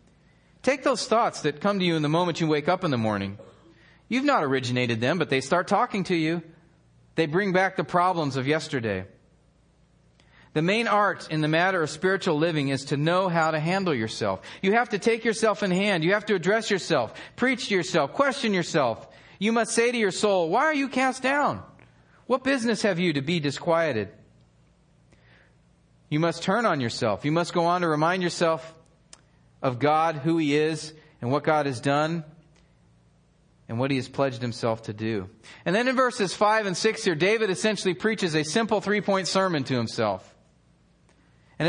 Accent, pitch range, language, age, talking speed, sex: American, 140-195 Hz, English, 40-59, 190 wpm, male